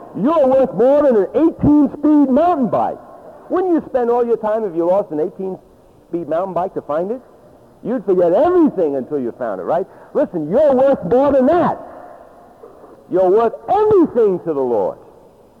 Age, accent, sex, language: 50-69, American, male, English